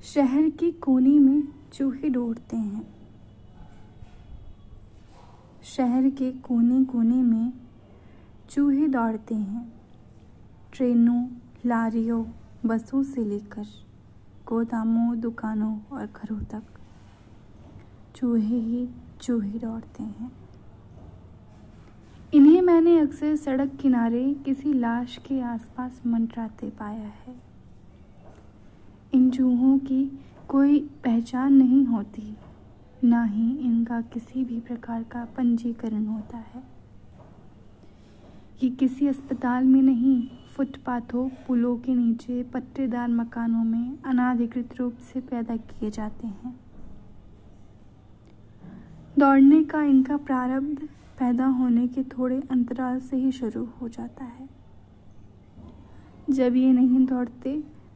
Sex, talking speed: female, 100 wpm